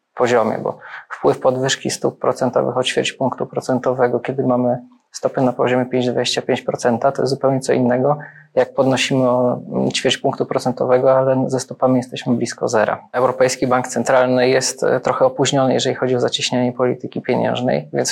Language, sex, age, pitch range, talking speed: Polish, male, 20-39, 125-135 Hz, 150 wpm